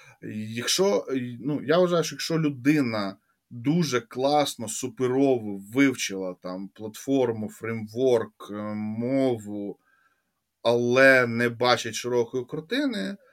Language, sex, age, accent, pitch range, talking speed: Ukrainian, male, 20-39, native, 120-155 Hz, 90 wpm